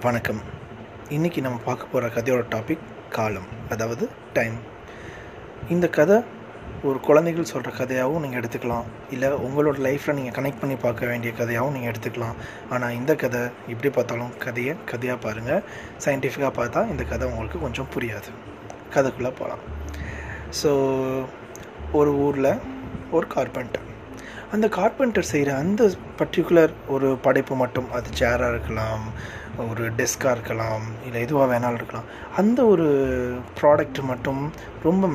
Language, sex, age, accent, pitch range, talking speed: Tamil, male, 20-39, native, 120-150 Hz, 125 wpm